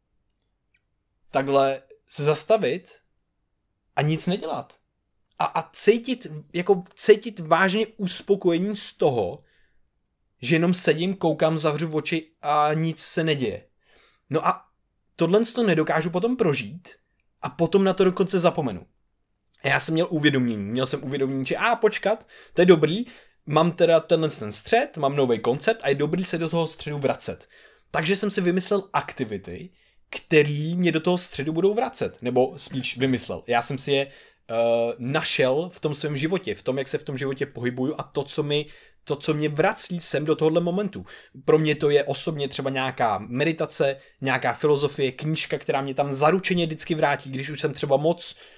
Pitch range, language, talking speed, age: 135-175 Hz, Czech, 170 wpm, 20-39